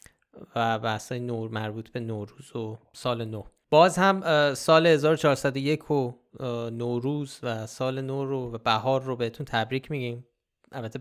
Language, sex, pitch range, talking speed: Persian, male, 115-135 Hz, 140 wpm